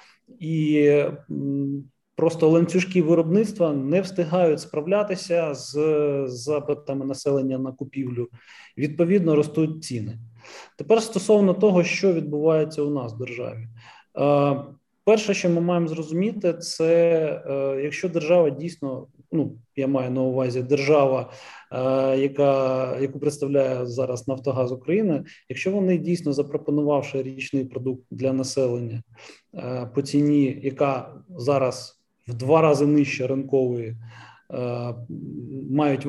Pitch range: 130-160 Hz